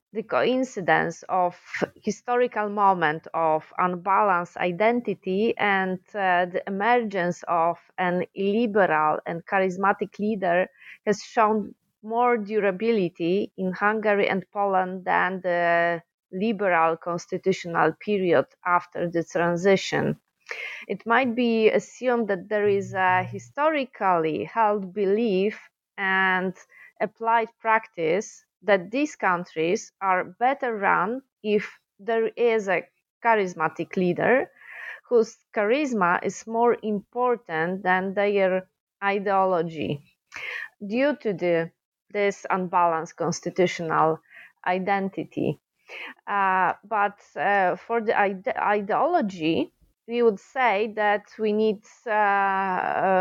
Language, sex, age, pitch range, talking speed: English, female, 30-49, 180-220 Hz, 100 wpm